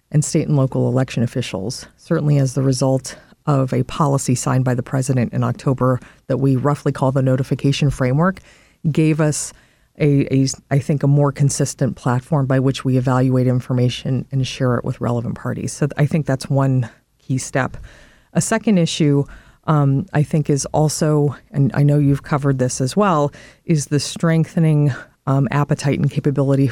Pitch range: 130-150 Hz